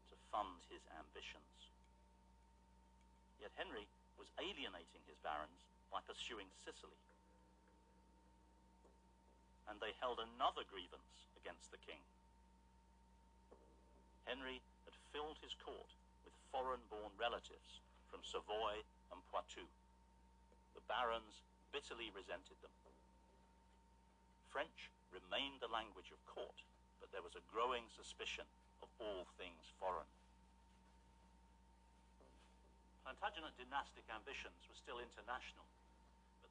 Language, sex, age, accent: English, male, 60-79, British